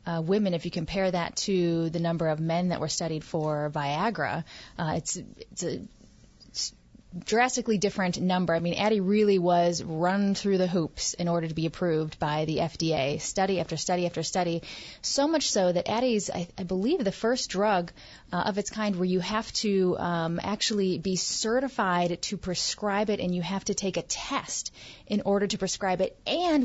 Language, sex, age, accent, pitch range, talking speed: English, female, 30-49, American, 175-215 Hz, 190 wpm